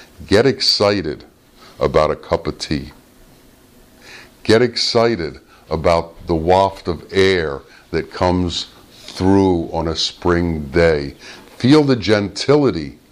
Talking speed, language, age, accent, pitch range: 110 wpm, English, 50-69, American, 85-125 Hz